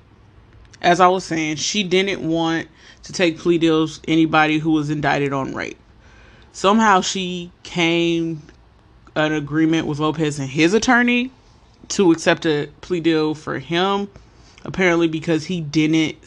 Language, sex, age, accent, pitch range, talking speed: English, male, 20-39, American, 145-170 Hz, 140 wpm